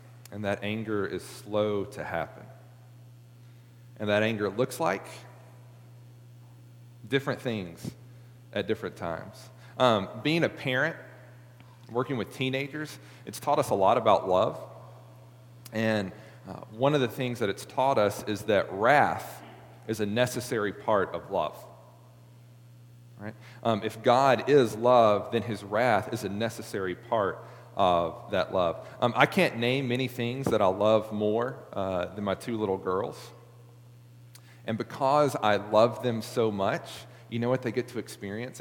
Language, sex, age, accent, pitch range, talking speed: English, male, 40-59, American, 105-125 Hz, 150 wpm